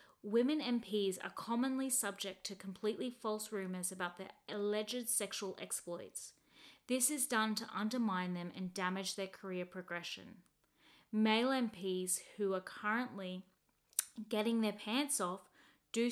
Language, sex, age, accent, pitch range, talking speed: English, female, 30-49, Australian, 190-235 Hz, 130 wpm